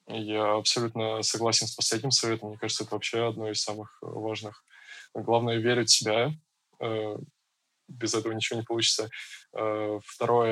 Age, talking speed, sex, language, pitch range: 20-39, 135 wpm, male, Russian, 110-115 Hz